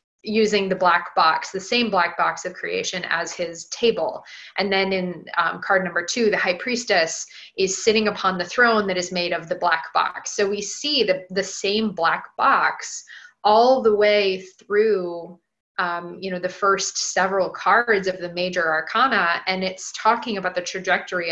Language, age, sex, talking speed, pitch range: English, 20-39, female, 185 wpm, 175-210 Hz